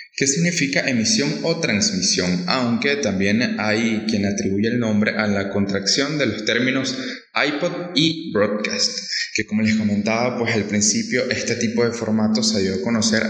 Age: 20-39